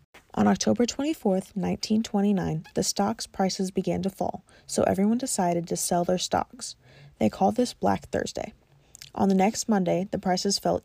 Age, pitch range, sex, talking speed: 20-39, 165-200 Hz, female, 160 wpm